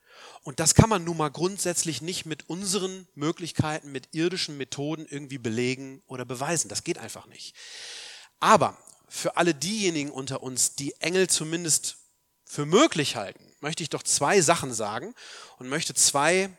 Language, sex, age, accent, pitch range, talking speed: German, male, 30-49, German, 130-180 Hz, 155 wpm